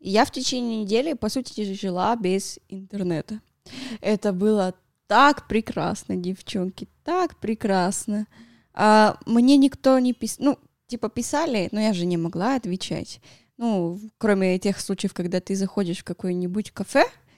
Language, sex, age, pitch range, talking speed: Russian, female, 20-39, 185-225 Hz, 140 wpm